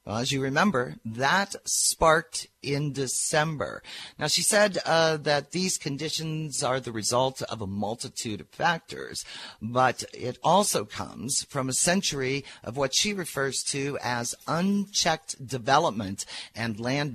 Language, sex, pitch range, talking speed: English, male, 115-150 Hz, 135 wpm